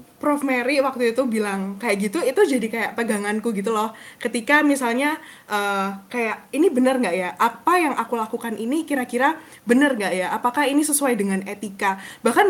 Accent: native